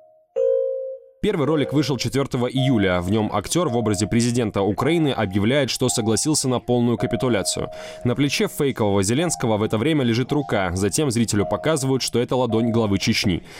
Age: 20-39